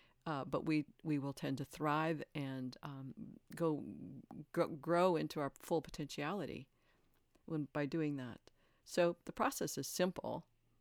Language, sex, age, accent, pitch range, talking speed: English, female, 50-69, American, 140-170 Hz, 145 wpm